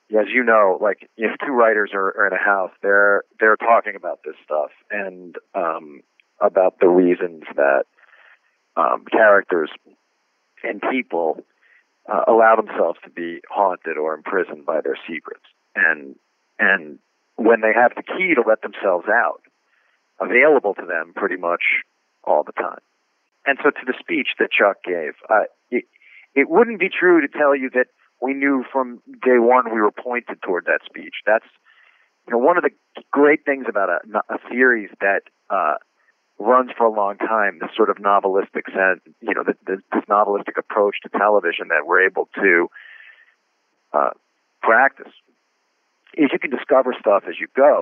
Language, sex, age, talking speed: English, male, 40-59, 165 wpm